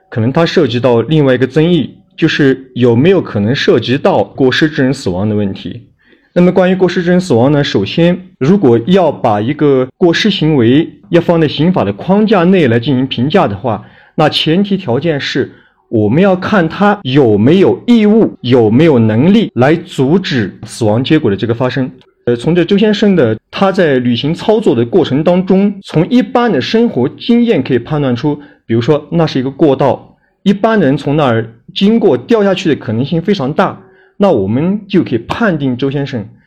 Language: Chinese